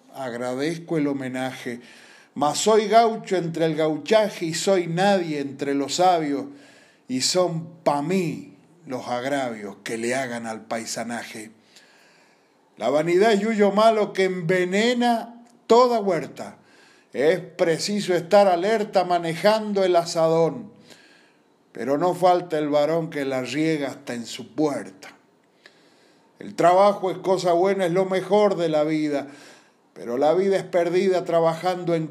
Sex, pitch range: male, 145-190 Hz